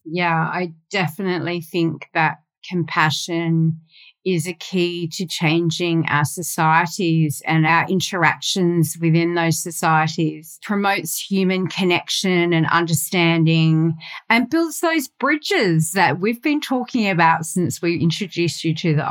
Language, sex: English, female